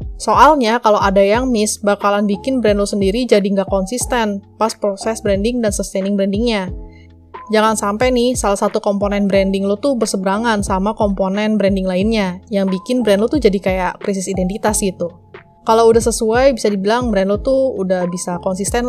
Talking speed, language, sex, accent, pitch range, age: 170 wpm, Indonesian, female, native, 195-230 Hz, 20-39